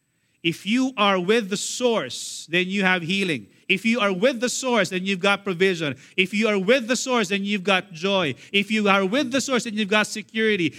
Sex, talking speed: male, 220 wpm